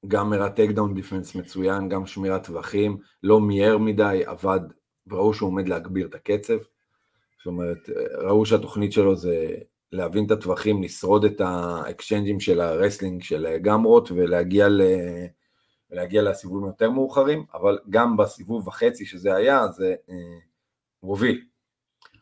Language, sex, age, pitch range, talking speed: Hebrew, male, 40-59, 95-115 Hz, 125 wpm